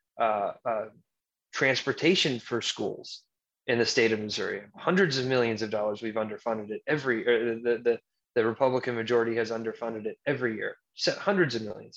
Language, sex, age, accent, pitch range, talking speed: English, male, 20-39, American, 120-140 Hz, 165 wpm